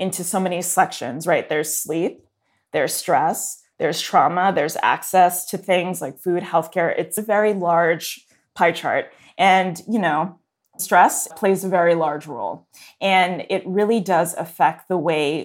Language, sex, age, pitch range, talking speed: English, female, 20-39, 170-210 Hz, 155 wpm